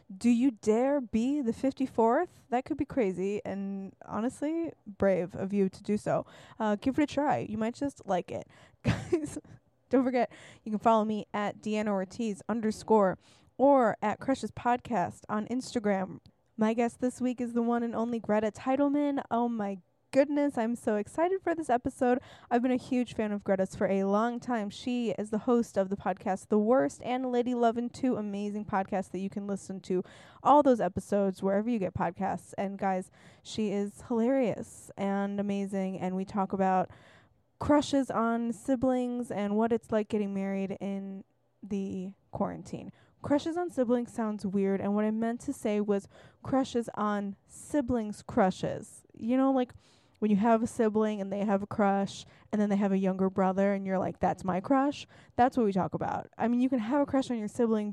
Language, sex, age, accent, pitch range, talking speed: English, female, 20-39, American, 195-250 Hz, 190 wpm